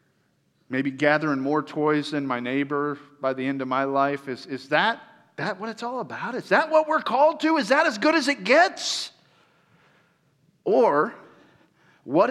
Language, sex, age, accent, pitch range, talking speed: English, male, 50-69, American, 140-190 Hz, 175 wpm